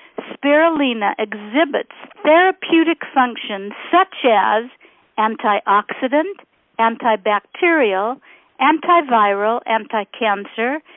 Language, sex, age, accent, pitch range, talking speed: English, female, 50-69, American, 215-275 Hz, 55 wpm